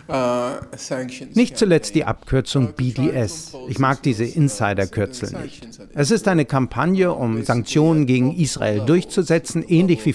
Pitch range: 115-155 Hz